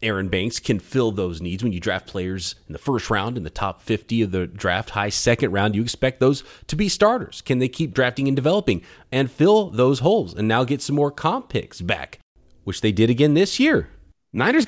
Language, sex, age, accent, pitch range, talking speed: English, male, 30-49, American, 105-145 Hz, 225 wpm